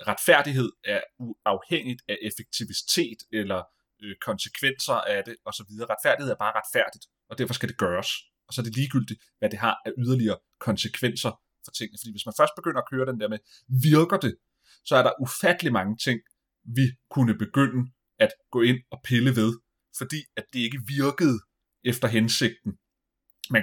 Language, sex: Danish, male